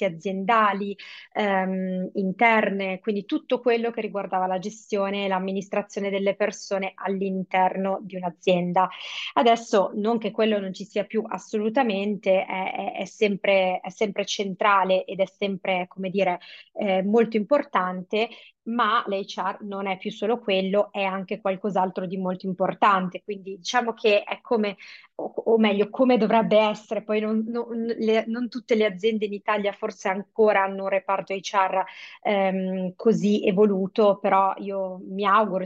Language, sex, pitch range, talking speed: Italian, female, 190-215 Hz, 145 wpm